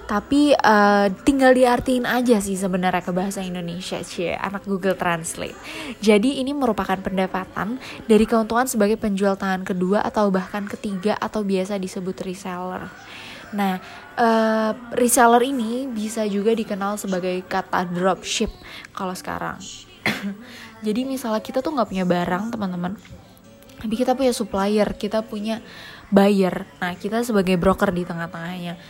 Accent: native